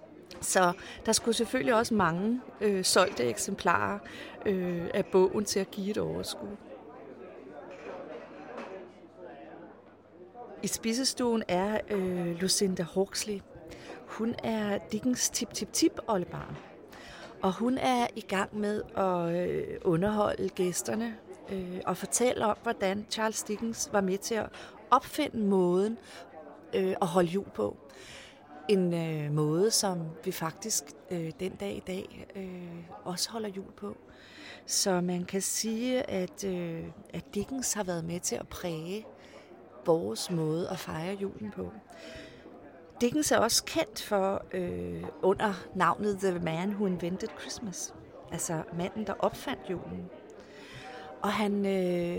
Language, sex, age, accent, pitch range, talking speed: Danish, female, 40-59, native, 180-220 Hz, 115 wpm